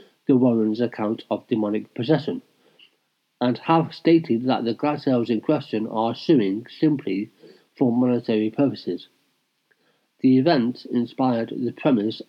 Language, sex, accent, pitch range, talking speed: English, male, British, 125-145 Hz, 125 wpm